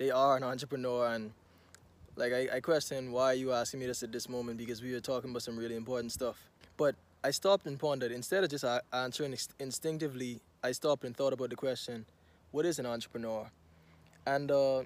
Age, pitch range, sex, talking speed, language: 20-39, 120-140 Hz, male, 200 wpm, English